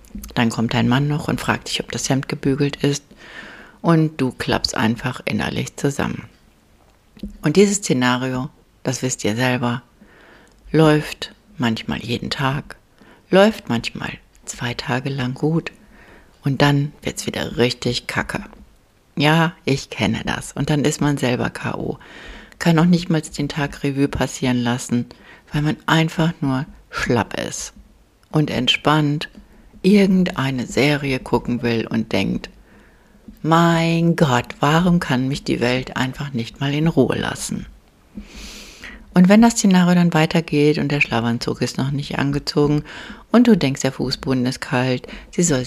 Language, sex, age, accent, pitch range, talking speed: German, female, 60-79, German, 125-160 Hz, 145 wpm